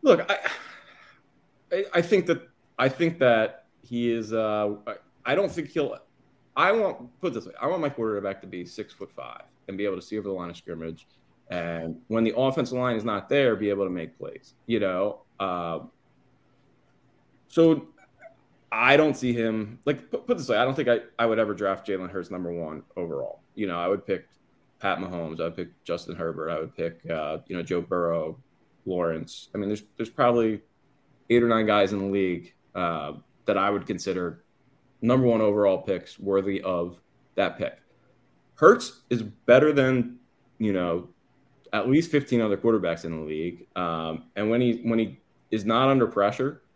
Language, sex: English, male